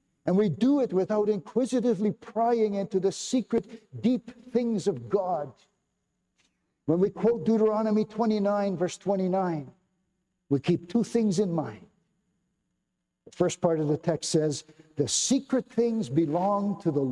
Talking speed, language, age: 140 wpm, English, 60-79